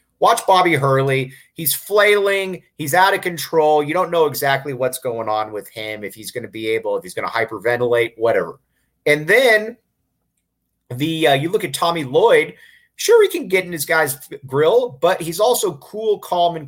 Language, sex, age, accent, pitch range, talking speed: English, male, 30-49, American, 130-210 Hz, 190 wpm